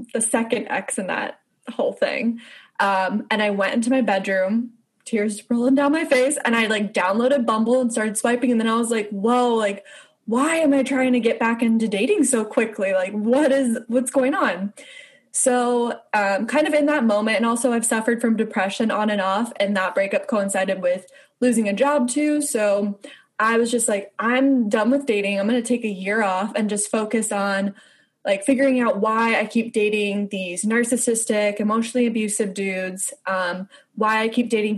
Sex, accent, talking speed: female, American, 195 wpm